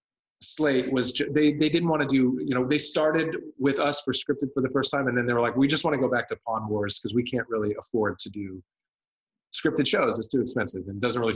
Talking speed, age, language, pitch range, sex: 260 wpm, 30-49, English, 120-165 Hz, male